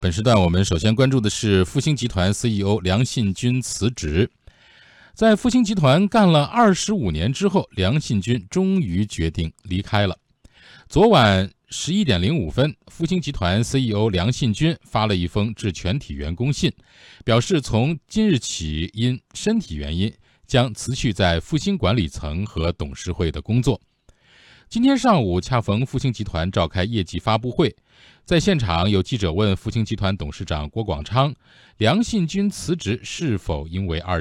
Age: 50-69